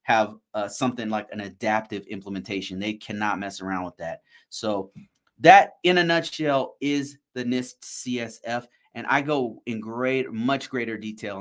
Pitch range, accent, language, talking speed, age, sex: 105-130 Hz, American, English, 160 wpm, 30-49, male